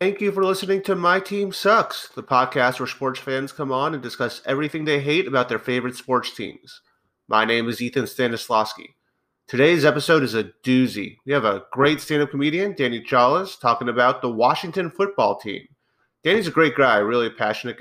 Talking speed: 190 wpm